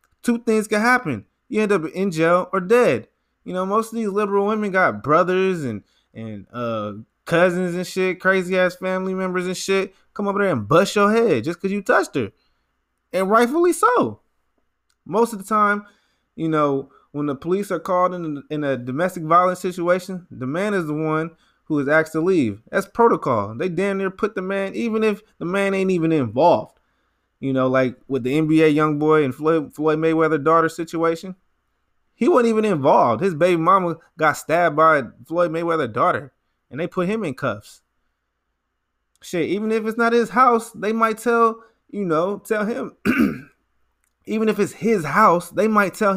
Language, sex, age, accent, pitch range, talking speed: English, male, 20-39, American, 155-205 Hz, 185 wpm